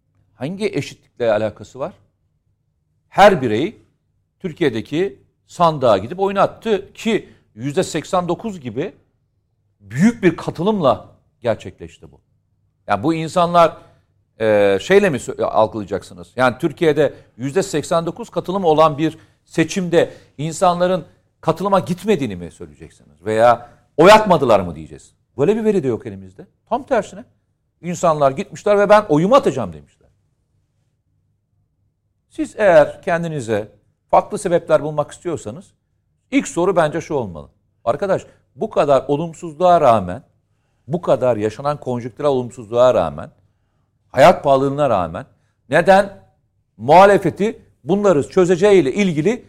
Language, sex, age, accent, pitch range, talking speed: Turkish, male, 50-69, native, 115-180 Hz, 105 wpm